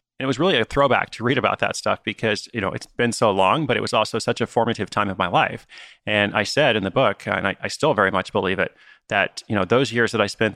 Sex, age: male, 30-49